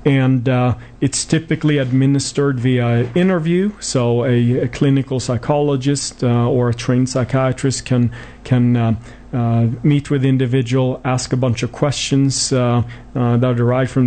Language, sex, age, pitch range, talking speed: English, male, 40-59, 120-135 Hz, 155 wpm